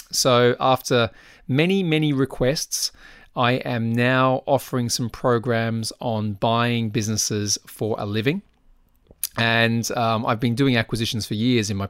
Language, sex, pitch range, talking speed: English, male, 110-130 Hz, 135 wpm